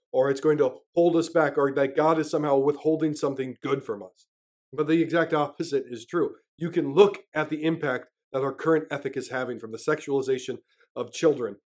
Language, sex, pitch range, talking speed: English, male, 135-165 Hz, 205 wpm